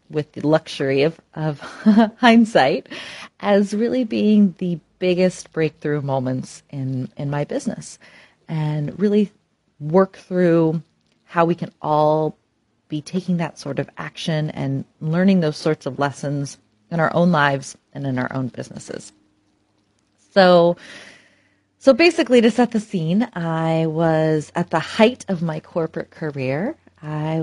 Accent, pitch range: American, 140-195 Hz